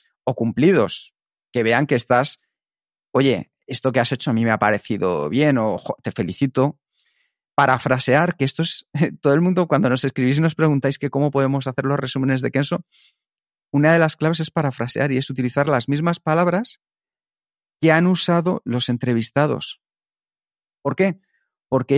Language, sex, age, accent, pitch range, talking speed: Spanish, male, 40-59, Spanish, 125-160 Hz, 165 wpm